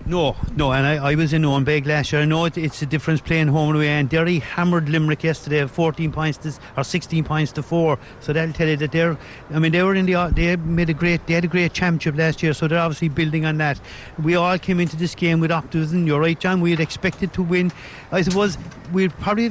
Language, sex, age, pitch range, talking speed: English, male, 50-69, 150-175 Hz, 255 wpm